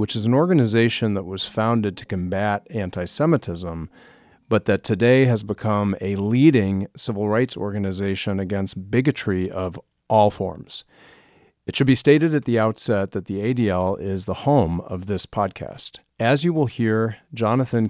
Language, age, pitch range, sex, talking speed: English, 40-59, 95-120 Hz, male, 155 wpm